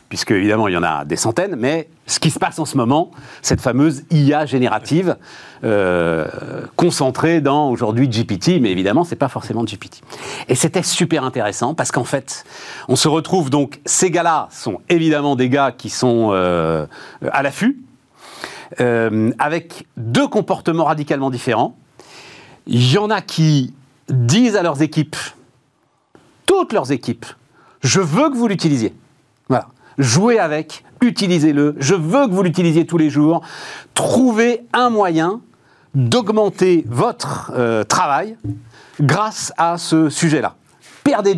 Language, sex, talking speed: French, male, 150 wpm